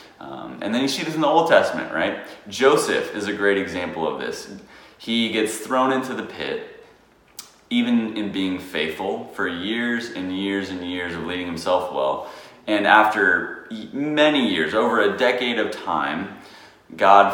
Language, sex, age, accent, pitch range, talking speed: English, male, 30-49, American, 95-120 Hz, 165 wpm